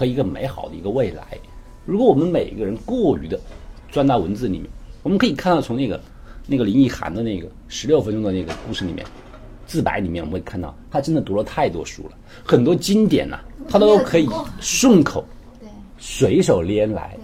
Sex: male